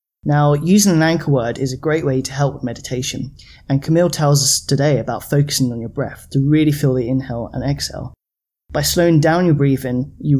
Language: English